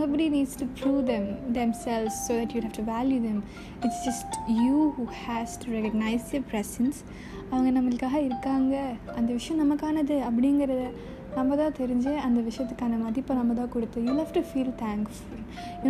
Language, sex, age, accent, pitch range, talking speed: Tamil, female, 20-39, native, 230-280 Hz, 175 wpm